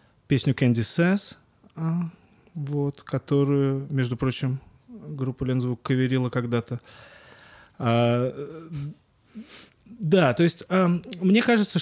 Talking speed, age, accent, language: 95 wpm, 30-49, native, Russian